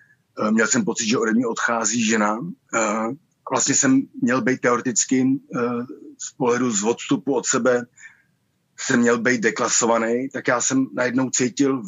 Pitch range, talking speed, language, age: 110-130 Hz, 145 wpm, Slovak, 30-49